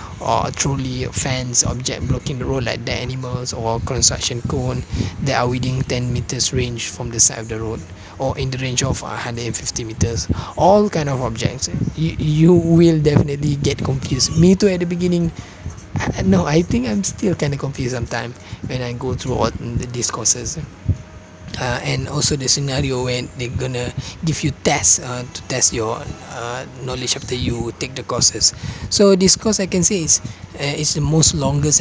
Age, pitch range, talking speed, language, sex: 20-39, 120-145 Hz, 185 wpm, English, male